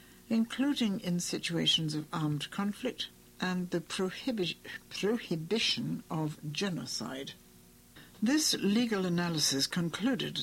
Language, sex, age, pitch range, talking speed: English, female, 60-79, 155-215 Hz, 85 wpm